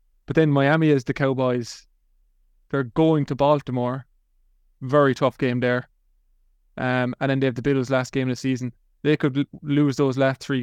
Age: 20-39